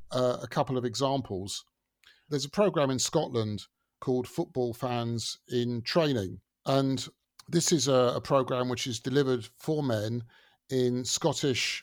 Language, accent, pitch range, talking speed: English, British, 120-140 Hz, 140 wpm